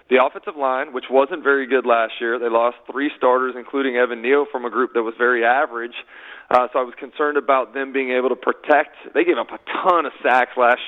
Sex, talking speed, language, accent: male, 230 wpm, English, American